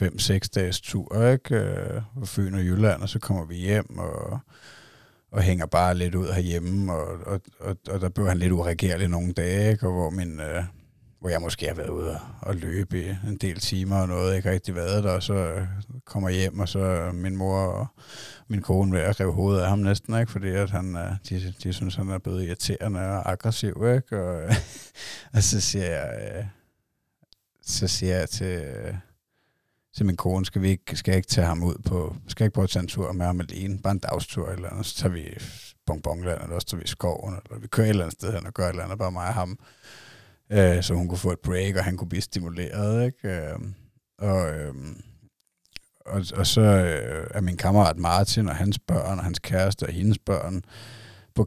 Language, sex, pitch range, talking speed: Danish, male, 90-105 Hz, 215 wpm